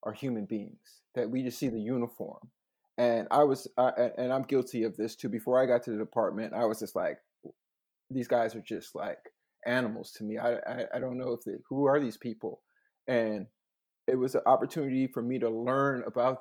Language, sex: English, male